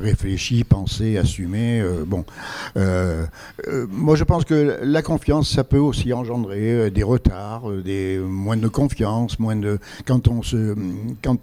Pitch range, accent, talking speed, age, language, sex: 105-135 Hz, French, 165 wpm, 60-79, French, male